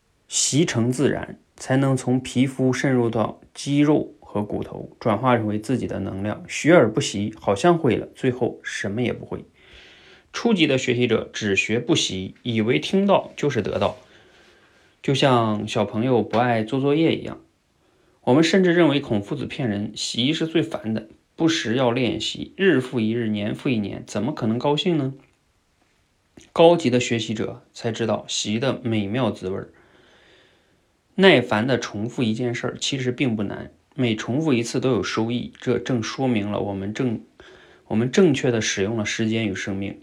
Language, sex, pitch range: Chinese, male, 105-130 Hz